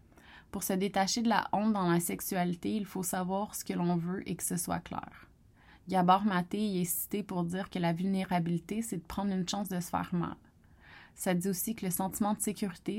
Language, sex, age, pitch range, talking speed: French, female, 20-39, 180-220 Hz, 220 wpm